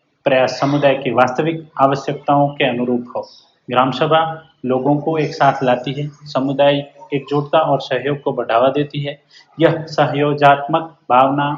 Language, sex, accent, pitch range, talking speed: Hindi, male, native, 130-150 Hz, 140 wpm